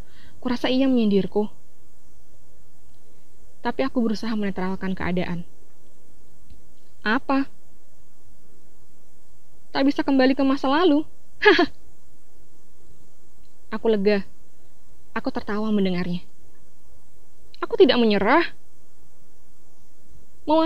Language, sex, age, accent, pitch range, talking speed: Indonesian, female, 20-39, native, 195-245 Hz, 70 wpm